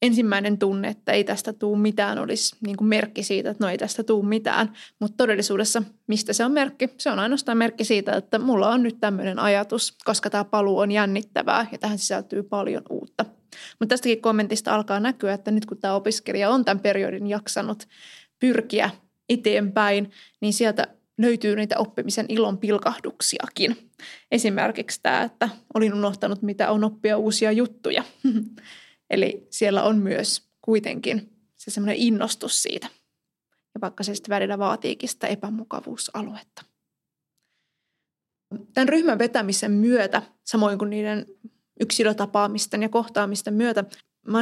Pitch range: 205-230 Hz